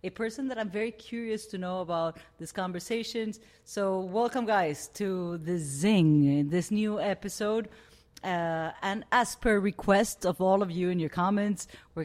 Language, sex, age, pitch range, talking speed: English, female, 30-49, 180-225 Hz, 165 wpm